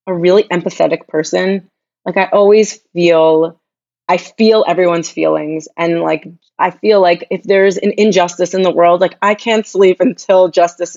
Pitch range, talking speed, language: 170-200 Hz, 165 wpm, English